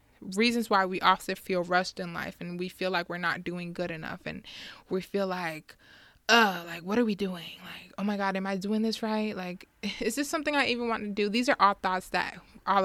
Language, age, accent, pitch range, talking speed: English, 20-39, American, 185-215 Hz, 240 wpm